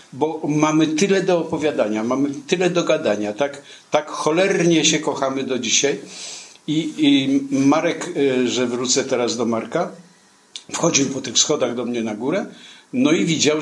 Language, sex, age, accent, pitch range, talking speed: Polish, male, 50-69, native, 120-155 Hz, 155 wpm